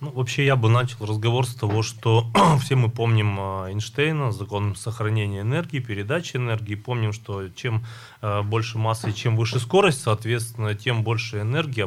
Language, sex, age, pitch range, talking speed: Russian, male, 30-49, 105-125 Hz, 160 wpm